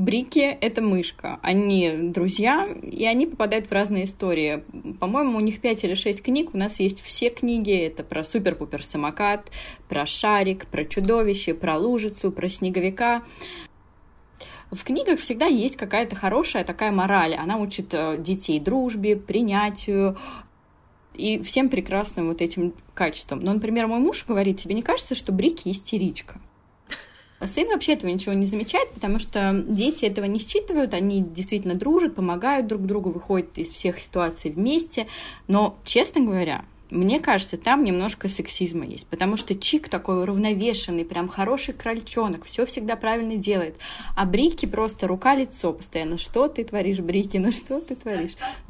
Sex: female